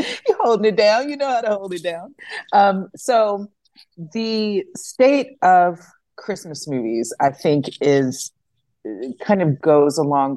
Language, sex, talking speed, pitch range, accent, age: English, female, 145 wpm, 130-175 Hz, American, 40-59